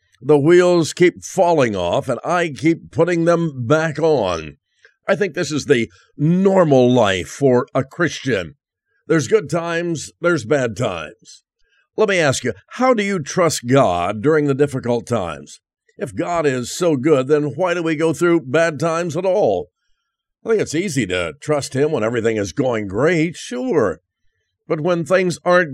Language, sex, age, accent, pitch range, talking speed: English, male, 50-69, American, 125-170 Hz, 170 wpm